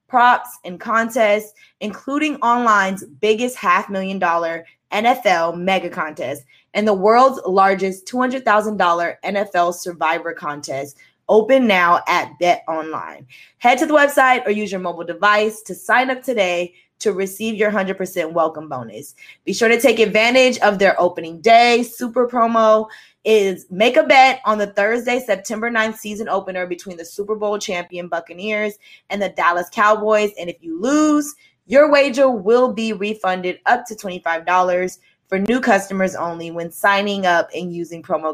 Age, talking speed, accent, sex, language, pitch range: 20-39, 150 wpm, American, female, English, 180-230 Hz